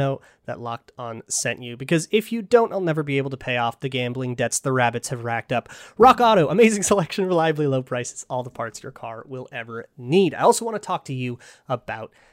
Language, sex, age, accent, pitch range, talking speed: English, male, 30-49, American, 130-180 Hz, 230 wpm